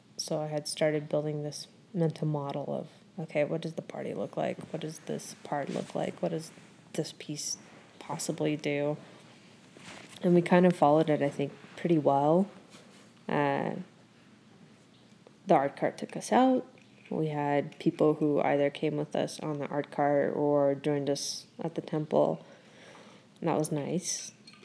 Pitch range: 150-175 Hz